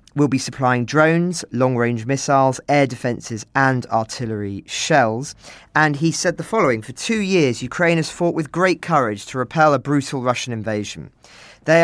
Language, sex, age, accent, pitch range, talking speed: English, male, 40-59, British, 115-150 Hz, 160 wpm